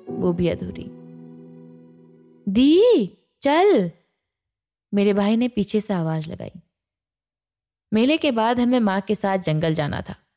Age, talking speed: 20-39, 125 wpm